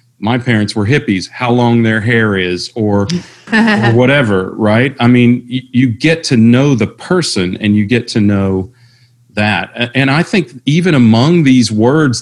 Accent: American